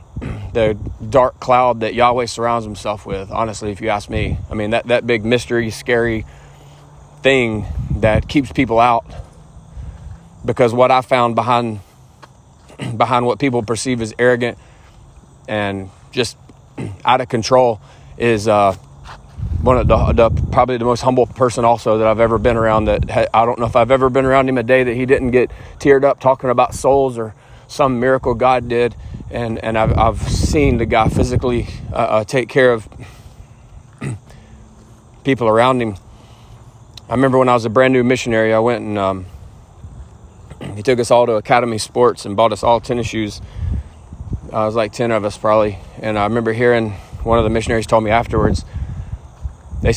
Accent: American